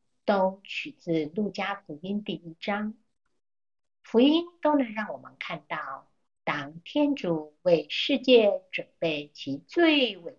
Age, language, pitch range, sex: 50-69, Chinese, 160-250 Hz, female